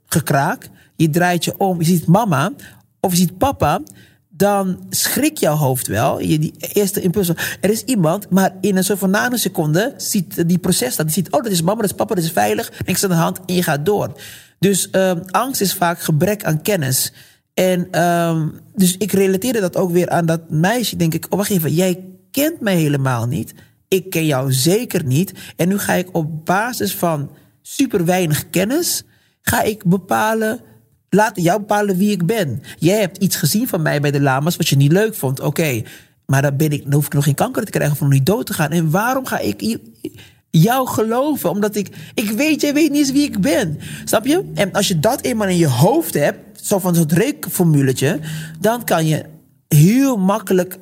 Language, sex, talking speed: Dutch, male, 210 wpm